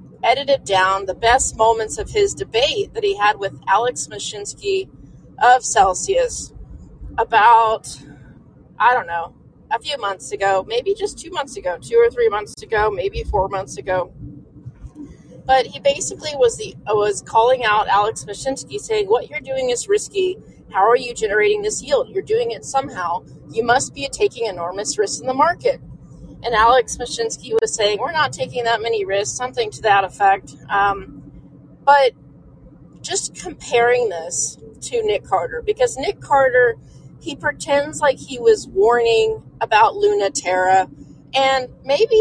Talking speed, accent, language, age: 155 wpm, American, English, 20-39